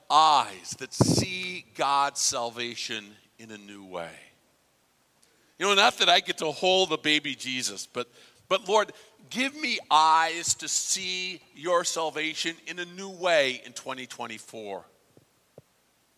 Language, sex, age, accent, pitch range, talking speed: English, male, 50-69, American, 140-190 Hz, 135 wpm